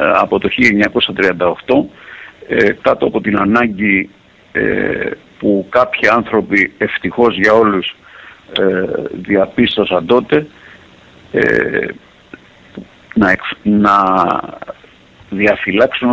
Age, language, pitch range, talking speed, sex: 50-69, English, 95-115 Hz, 65 wpm, male